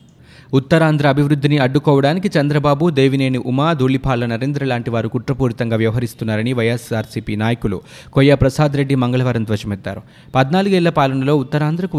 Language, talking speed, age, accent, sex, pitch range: Telugu, 110 wpm, 20-39, native, male, 115-150 Hz